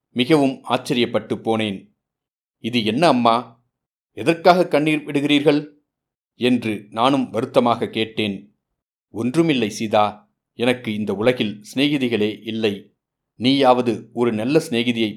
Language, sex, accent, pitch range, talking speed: Tamil, male, native, 110-130 Hz, 95 wpm